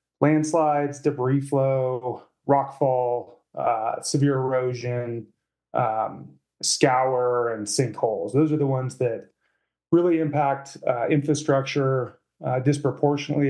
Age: 20-39